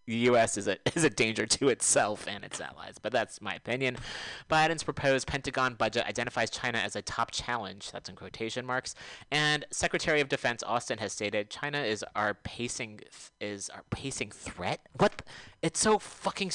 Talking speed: 180 wpm